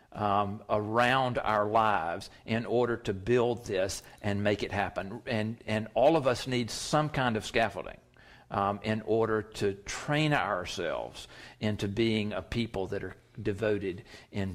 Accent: American